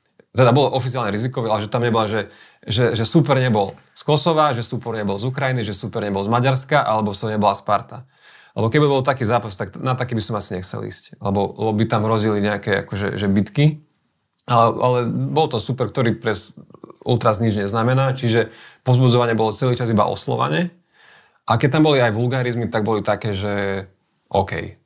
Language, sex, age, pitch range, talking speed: Slovak, male, 30-49, 105-130 Hz, 195 wpm